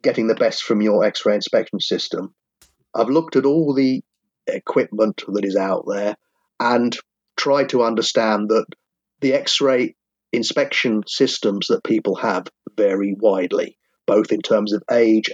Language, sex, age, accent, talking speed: English, male, 40-59, British, 145 wpm